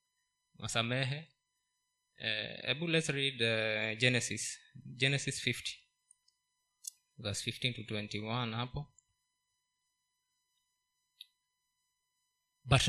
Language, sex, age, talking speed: Swahili, male, 20-39, 70 wpm